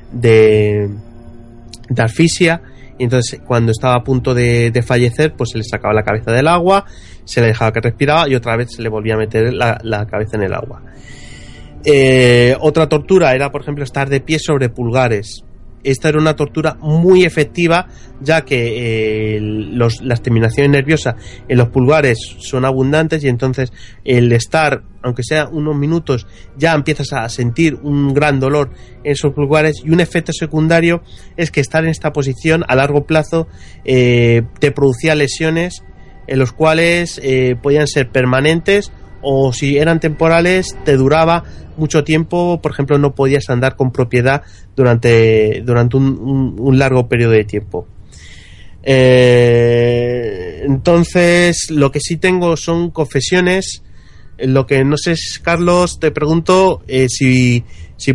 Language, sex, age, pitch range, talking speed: Spanish, male, 30-49, 120-155 Hz, 155 wpm